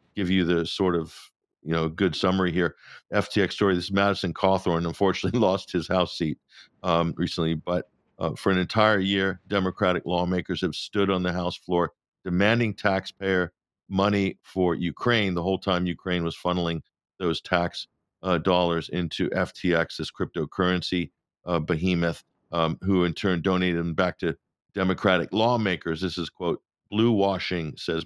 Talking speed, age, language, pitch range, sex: 160 wpm, 50-69, English, 85-95 Hz, male